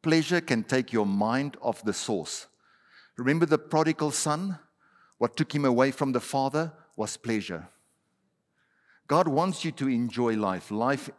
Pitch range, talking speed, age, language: 110-165 Hz, 150 wpm, 50-69, English